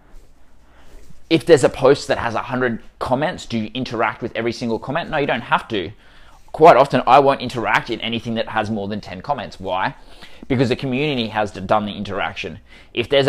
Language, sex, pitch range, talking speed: English, male, 85-120 Hz, 195 wpm